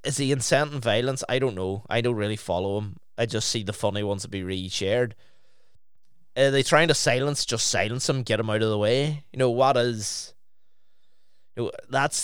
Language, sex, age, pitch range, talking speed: English, male, 20-39, 105-125 Hz, 205 wpm